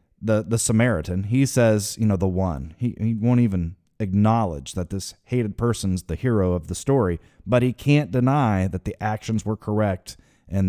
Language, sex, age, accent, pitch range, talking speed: English, male, 30-49, American, 95-120 Hz, 185 wpm